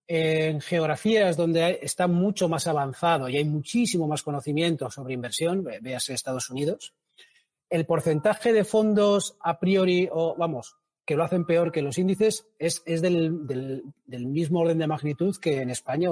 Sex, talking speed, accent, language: male, 165 wpm, Spanish, Spanish